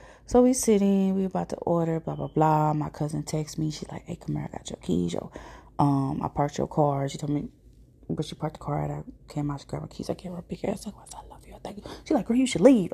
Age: 20-39